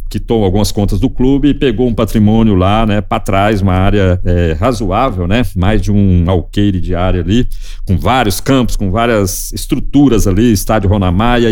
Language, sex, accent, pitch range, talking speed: Portuguese, male, Brazilian, 100-130 Hz, 175 wpm